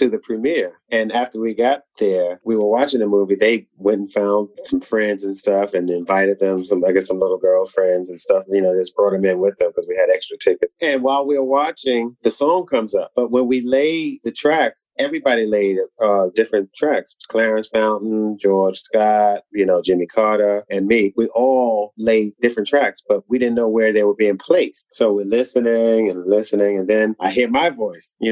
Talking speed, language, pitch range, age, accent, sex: 215 wpm, English, 105-135 Hz, 30-49, American, male